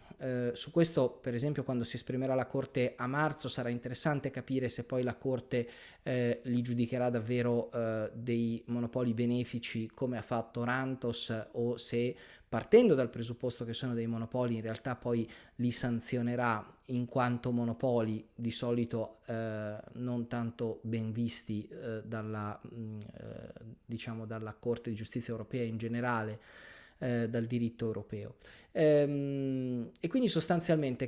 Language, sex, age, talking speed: Italian, male, 30-49, 140 wpm